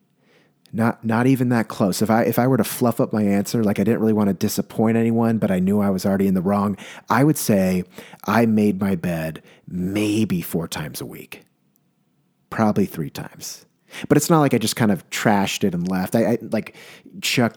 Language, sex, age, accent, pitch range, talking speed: English, male, 30-49, American, 100-130 Hz, 215 wpm